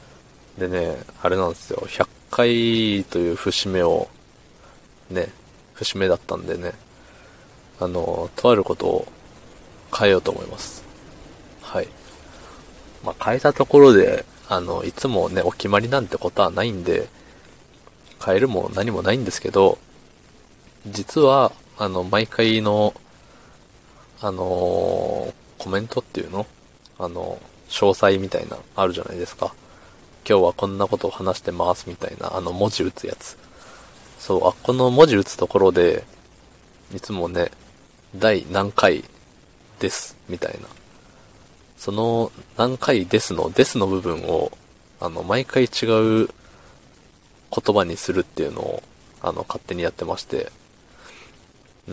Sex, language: male, Japanese